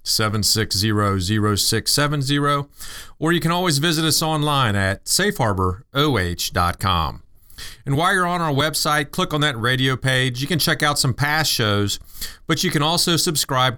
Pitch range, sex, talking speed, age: 105-145 Hz, male, 150 wpm, 40-59